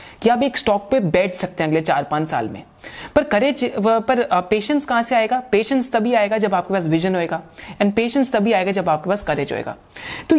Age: 30-49